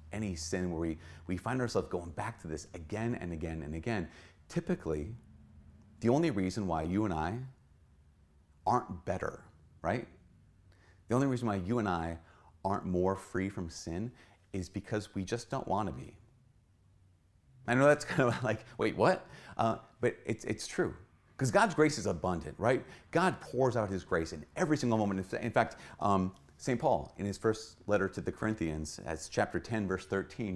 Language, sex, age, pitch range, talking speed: English, male, 30-49, 80-115 Hz, 180 wpm